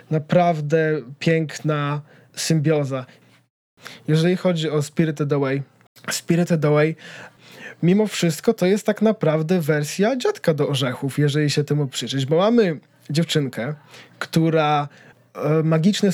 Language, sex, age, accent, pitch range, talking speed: Polish, male, 20-39, native, 150-175 Hz, 110 wpm